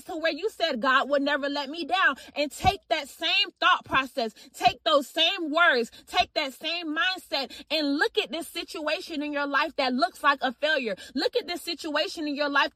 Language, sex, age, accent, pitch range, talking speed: English, female, 30-49, American, 280-345 Hz, 205 wpm